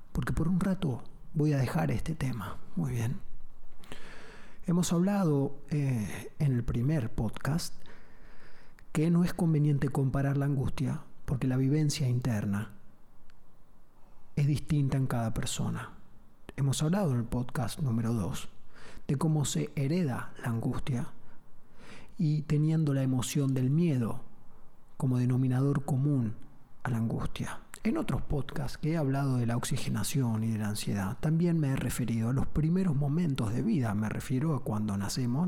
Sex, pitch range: male, 125-150 Hz